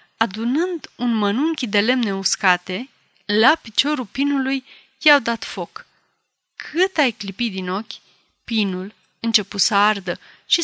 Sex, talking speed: female, 125 wpm